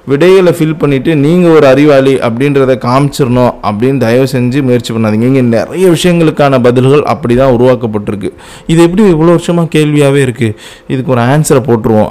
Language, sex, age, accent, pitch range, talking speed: Tamil, male, 20-39, native, 120-155 Hz, 140 wpm